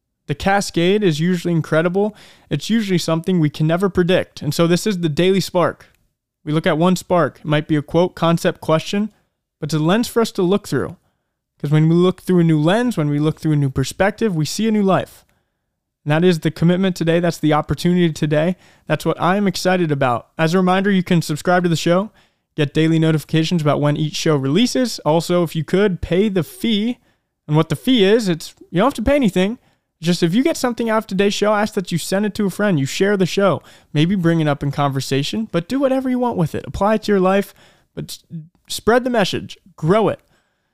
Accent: American